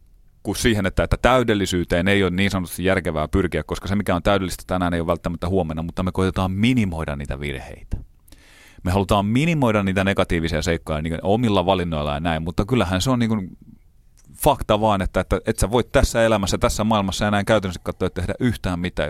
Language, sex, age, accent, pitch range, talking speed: Finnish, male, 30-49, native, 85-110 Hz, 180 wpm